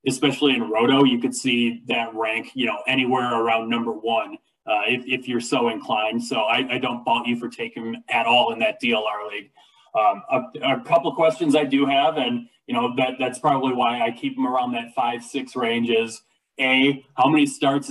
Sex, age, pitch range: male, 20-39, 115-140 Hz